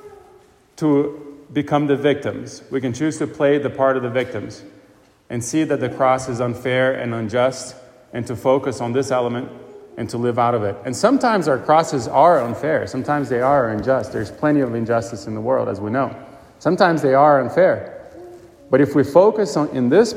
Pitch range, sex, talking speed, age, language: 120-150 Hz, male, 195 wpm, 30-49, English